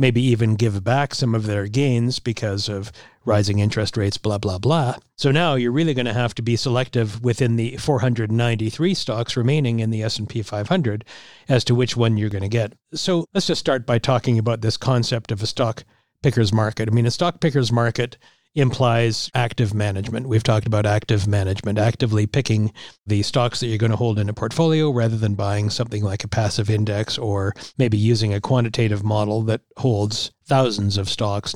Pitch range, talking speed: 110-130 Hz, 195 wpm